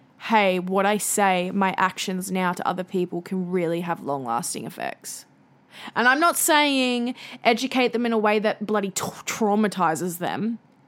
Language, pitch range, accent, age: English, 190-240 Hz, Australian, 10-29